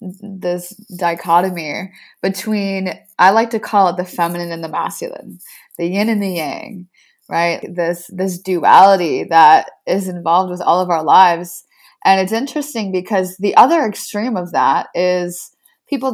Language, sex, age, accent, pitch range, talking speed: English, female, 20-39, American, 185-220 Hz, 155 wpm